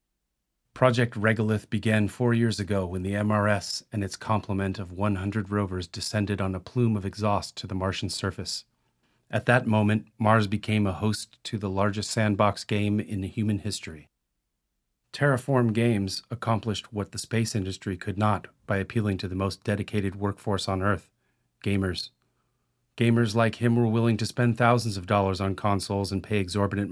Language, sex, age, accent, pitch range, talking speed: English, male, 40-59, American, 95-115 Hz, 165 wpm